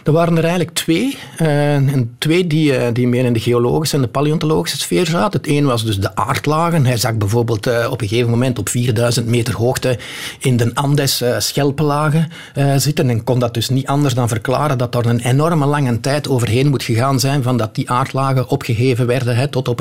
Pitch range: 120-150 Hz